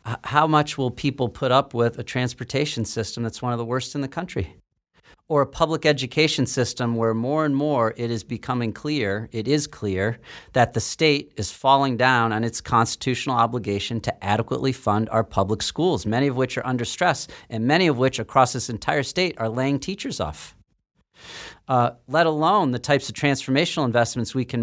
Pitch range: 120-150 Hz